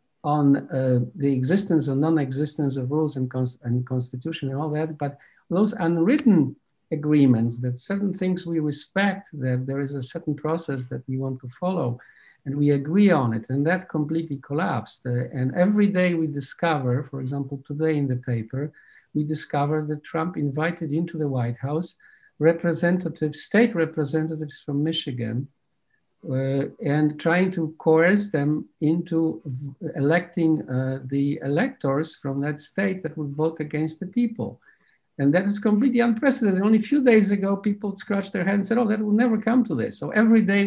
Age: 50-69